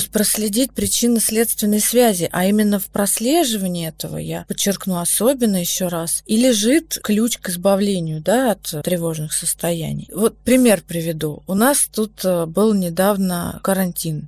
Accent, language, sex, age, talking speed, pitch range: native, Russian, female, 30-49, 130 wpm, 180-230 Hz